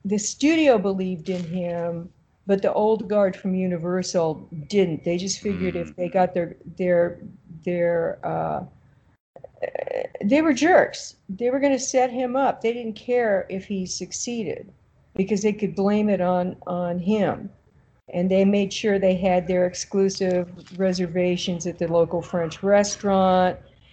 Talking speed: 155 wpm